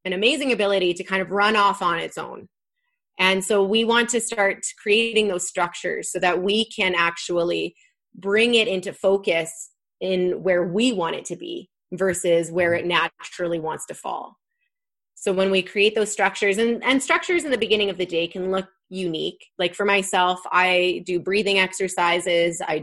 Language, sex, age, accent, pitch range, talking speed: English, female, 20-39, American, 175-220 Hz, 180 wpm